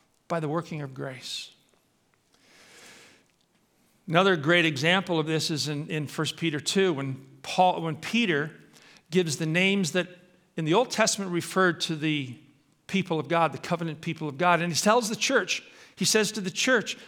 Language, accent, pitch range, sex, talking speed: English, American, 145-190 Hz, male, 170 wpm